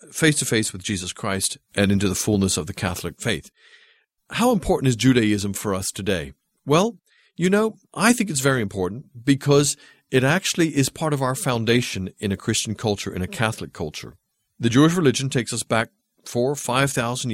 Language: English